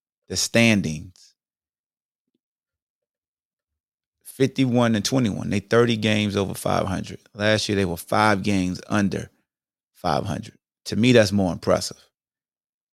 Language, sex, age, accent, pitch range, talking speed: English, male, 30-49, American, 100-125 Hz, 105 wpm